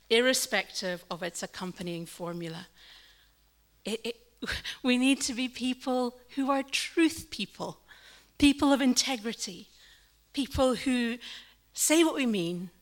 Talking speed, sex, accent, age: 110 wpm, female, British, 40-59